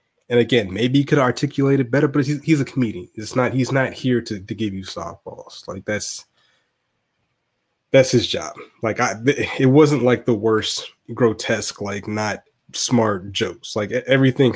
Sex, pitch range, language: male, 105-135 Hz, English